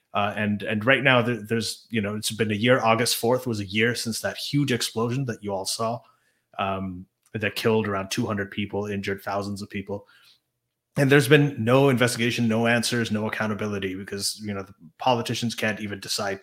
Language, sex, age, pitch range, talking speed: English, male, 30-49, 100-120 Hz, 195 wpm